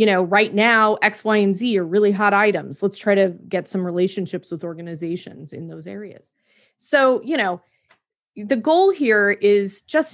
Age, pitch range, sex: 30-49, 195-245 Hz, female